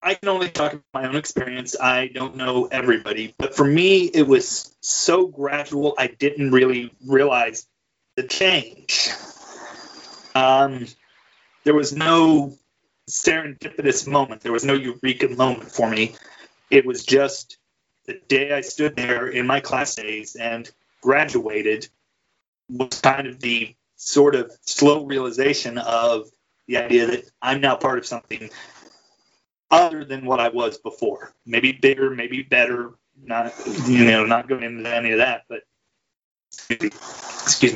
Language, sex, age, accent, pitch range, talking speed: English, male, 30-49, American, 120-145 Hz, 145 wpm